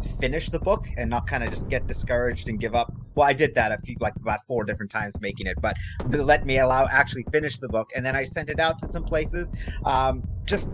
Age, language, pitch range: 30-49, English, 105-135 Hz